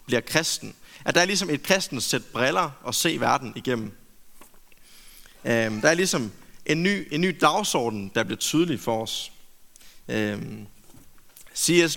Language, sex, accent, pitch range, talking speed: Danish, male, native, 125-185 Hz, 150 wpm